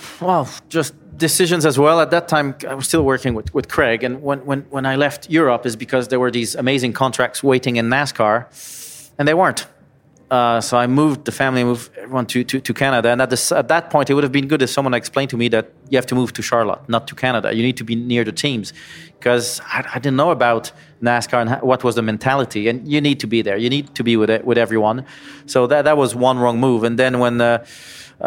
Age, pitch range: 30-49, 115-130 Hz